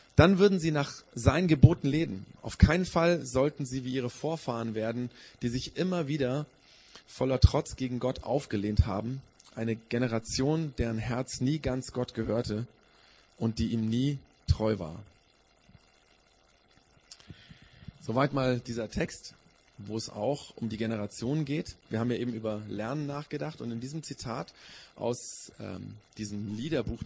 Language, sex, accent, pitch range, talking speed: German, male, German, 110-145 Hz, 145 wpm